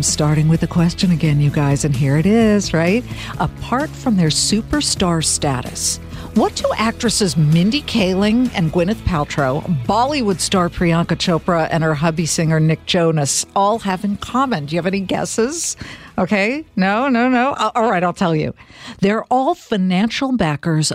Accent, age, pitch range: American, 60-79, 160-205 Hz